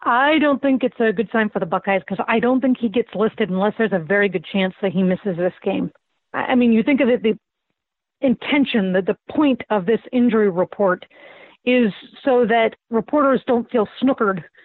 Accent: American